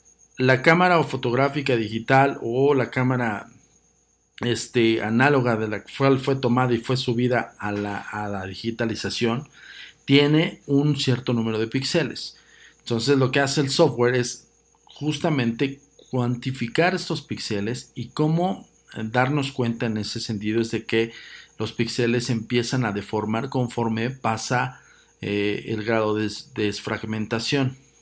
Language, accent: Spanish, Mexican